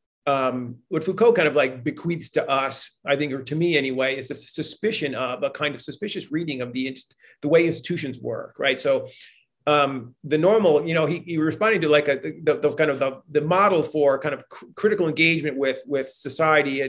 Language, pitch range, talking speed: English, 135-160 Hz, 205 wpm